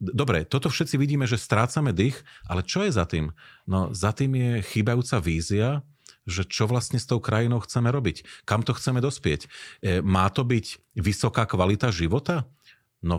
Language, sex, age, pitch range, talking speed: Slovak, male, 40-59, 90-120 Hz, 175 wpm